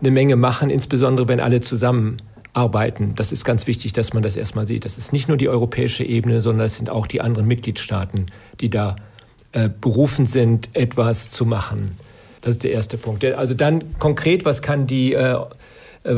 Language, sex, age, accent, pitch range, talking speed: German, male, 50-69, German, 115-135 Hz, 185 wpm